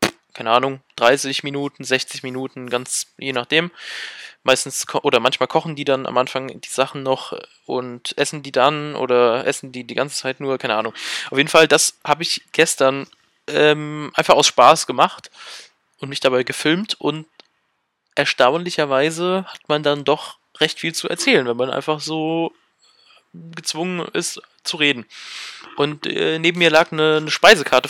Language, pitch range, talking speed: German, 130-155 Hz, 160 wpm